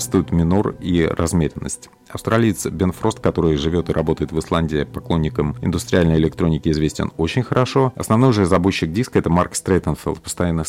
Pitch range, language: 80-105 Hz, Russian